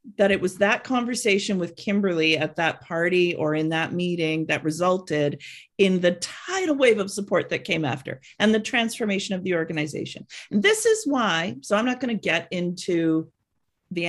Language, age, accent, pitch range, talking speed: English, 40-59, American, 165-220 Hz, 185 wpm